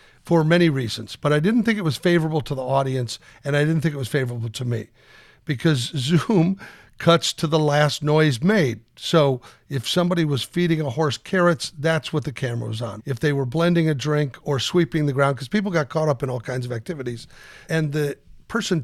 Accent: American